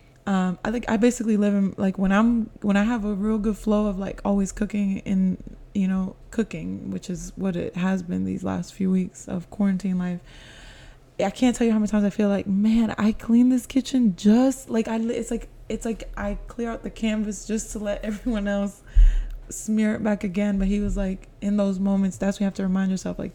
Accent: American